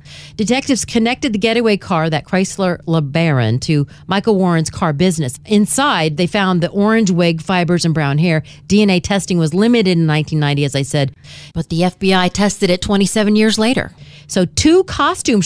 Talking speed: 165 wpm